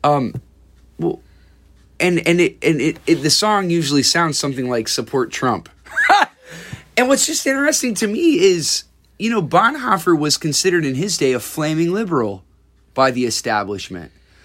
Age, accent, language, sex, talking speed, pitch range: 30-49, American, English, male, 155 wpm, 100-155 Hz